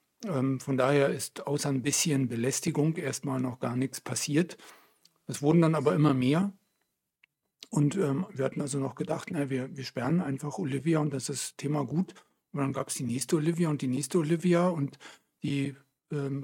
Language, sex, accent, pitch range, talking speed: German, male, German, 140-165 Hz, 185 wpm